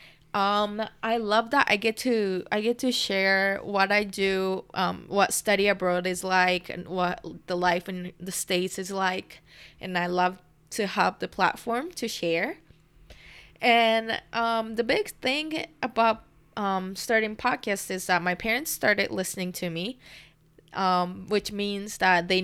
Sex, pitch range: female, 180-215 Hz